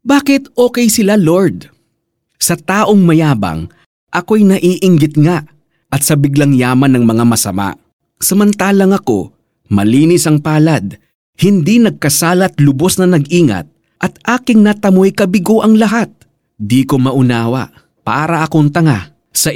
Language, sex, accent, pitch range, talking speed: Filipino, male, native, 120-190 Hz, 125 wpm